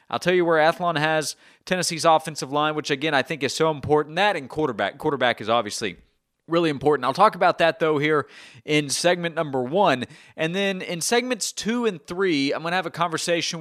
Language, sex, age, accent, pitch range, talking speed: English, male, 30-49, American, 130-160 Hz, 205 wpm